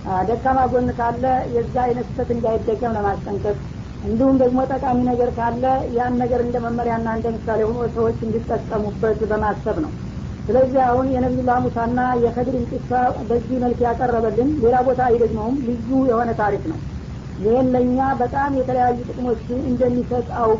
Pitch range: 240-260 Hz